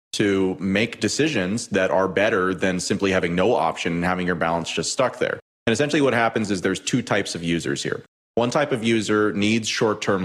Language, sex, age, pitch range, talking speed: English, male, 30-49, 90-110 Hz, 210 wpm